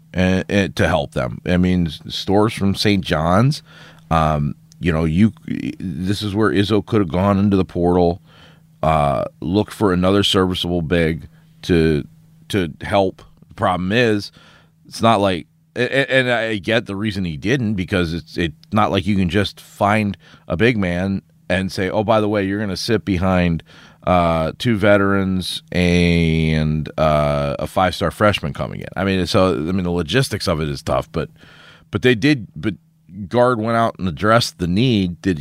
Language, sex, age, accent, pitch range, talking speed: English, male, 30-49, American, 85-110 Hz, 180 wpm